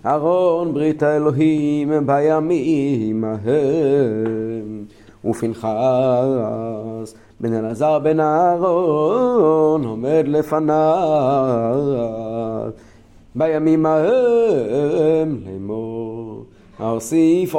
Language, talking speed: Hebrew, 55 wpm